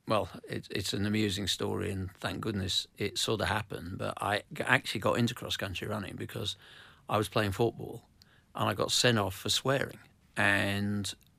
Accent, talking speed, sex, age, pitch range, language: British, 170 wpm, male, 50-69, 100-115 Hz, English